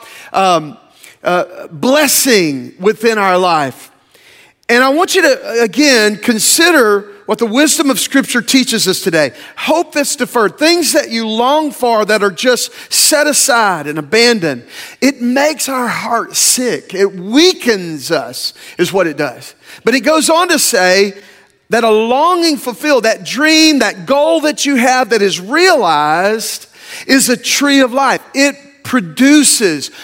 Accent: American